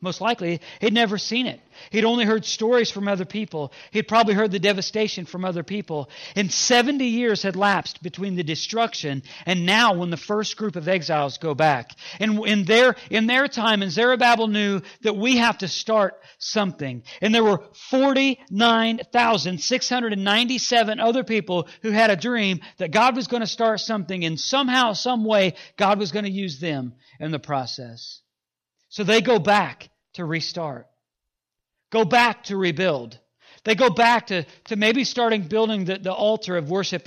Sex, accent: male, American